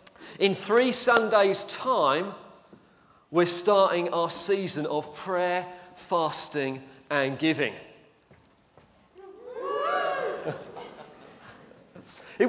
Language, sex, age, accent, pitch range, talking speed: English, male, 40-59, British, 155-195 Hz, 65 wpm